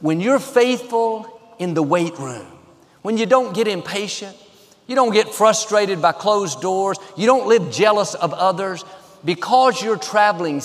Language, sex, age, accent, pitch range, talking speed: English, male, 50-69, American, 155-210 Hz, 160 wpm